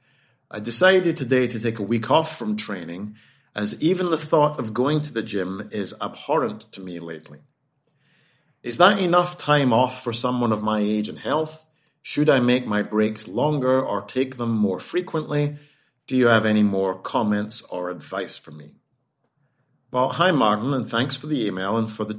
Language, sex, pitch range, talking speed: English, male, 105-140 Hz, 185 wpm